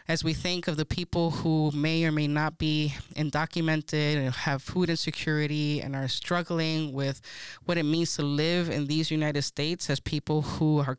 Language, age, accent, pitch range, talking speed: English, 20-39, American, 145-170 Hz, 185 wpm